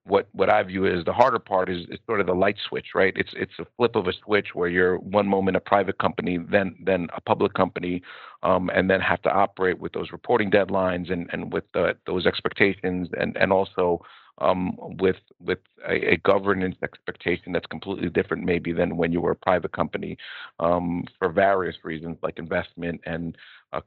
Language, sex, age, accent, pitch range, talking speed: English, male, 50-69, American, 85-100 Hz, 200 wpm